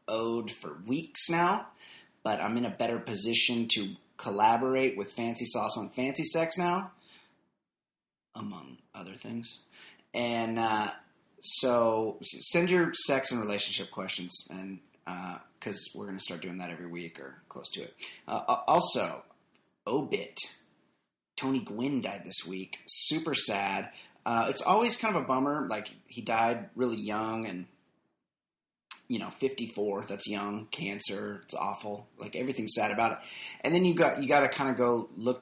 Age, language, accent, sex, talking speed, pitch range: 30-49, English, American, male, 160 wpm, 105-130 Hz